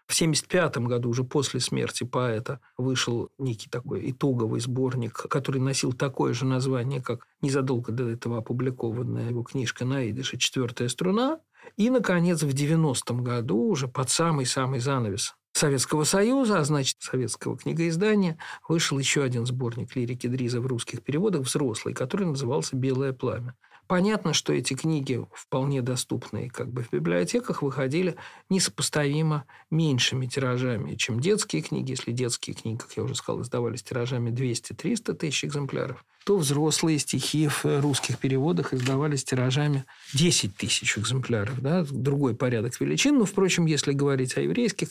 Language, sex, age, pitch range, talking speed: Russian, male, 50-69, 125-155 Hz, 145 wpm